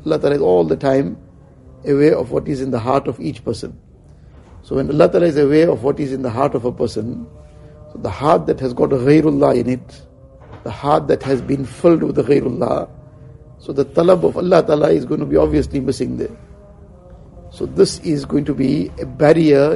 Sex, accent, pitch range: male, Indian, 120-150 Hz